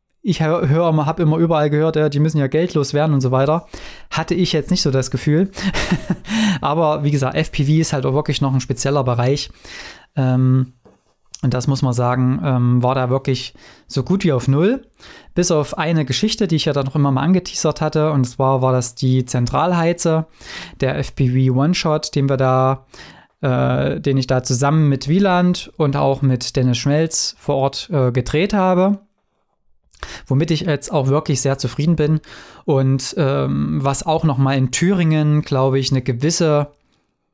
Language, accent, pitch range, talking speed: German, German, 130-160 Hz, 180 wpm